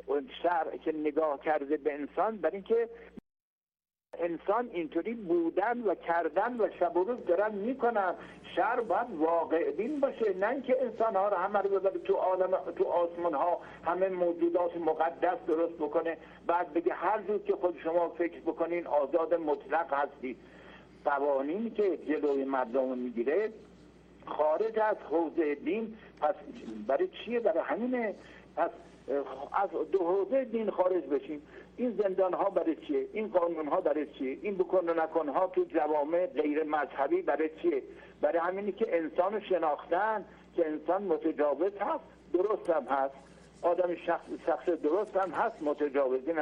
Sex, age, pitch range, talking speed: male, 60-79, 155-205 Hz, 145 wpm